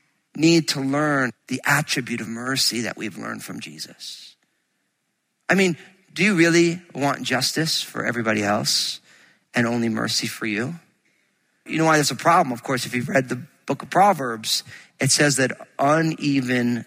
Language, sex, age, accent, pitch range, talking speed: English, male, 40-59, American, 145-220 Hz, 165 wpm